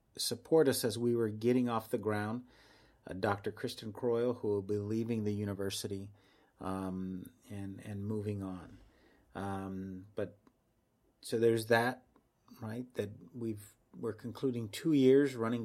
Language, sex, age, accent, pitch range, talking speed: English, male, 30-49, American, 100-115 Hz, 140 wpm